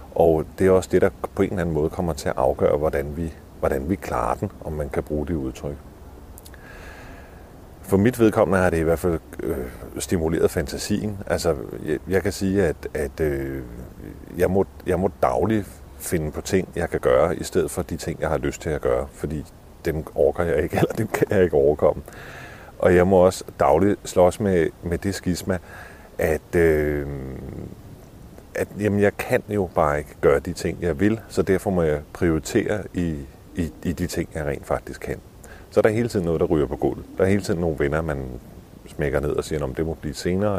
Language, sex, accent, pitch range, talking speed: Danish, male, native, 75-95 Hz, 210 wpm